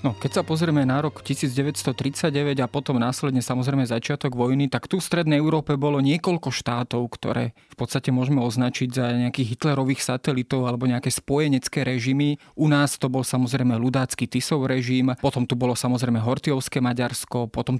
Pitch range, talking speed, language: 130-150 Hz, 165 wpm, Slovak